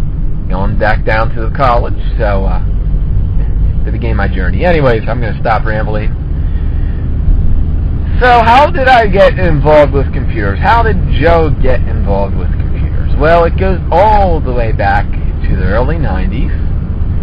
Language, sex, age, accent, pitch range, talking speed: English, male, 30-49, American, 75-100 Hz, 145 wpm